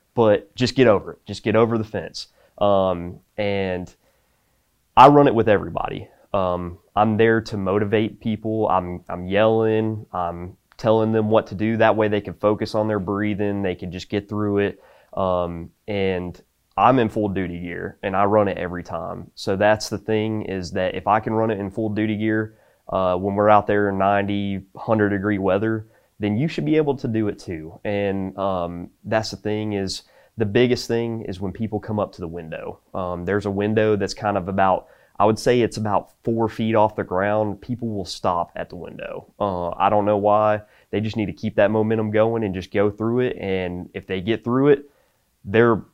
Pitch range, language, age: 95-110 Hz, English, 20-39